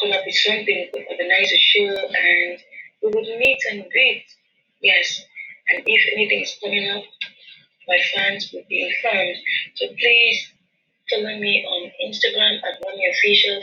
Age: 30-49